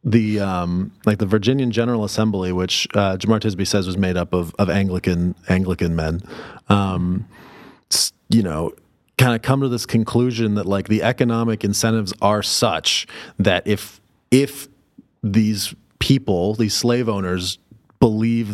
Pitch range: 95-120 Hz